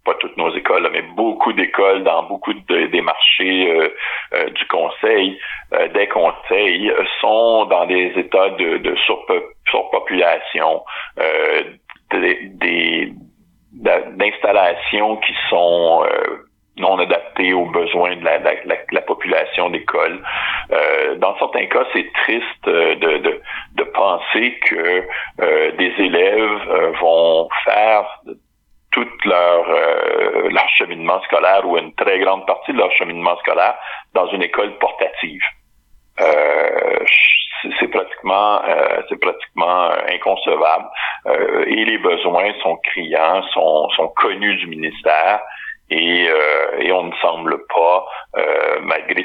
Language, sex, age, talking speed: French, male, 50-69, 135 wpm